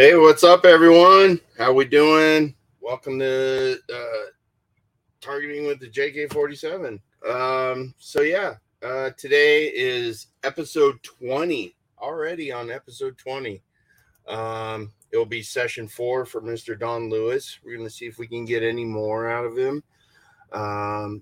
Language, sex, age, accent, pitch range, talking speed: English, male, 30-49, American, 110-155 Hz, 140 wpm